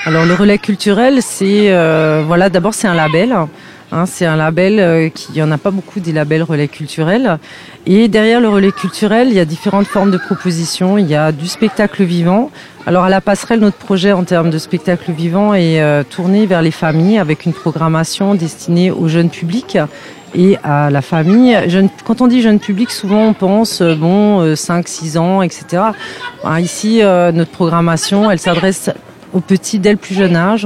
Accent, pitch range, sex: French, 170-205 Hz, female